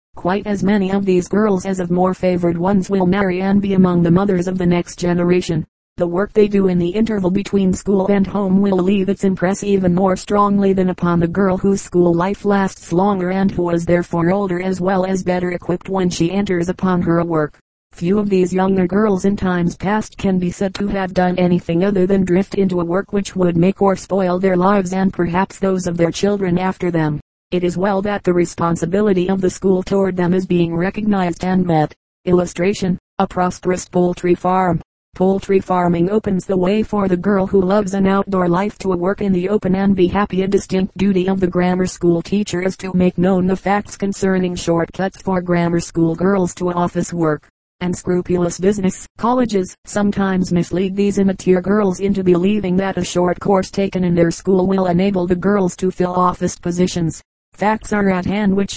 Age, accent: 40-59, American